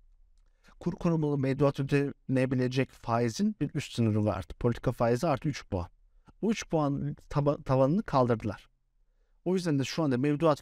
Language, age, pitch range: Turkish, 50-69, 110-150 Hz